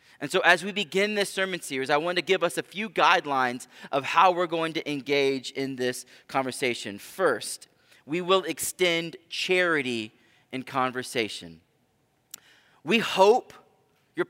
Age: 30-49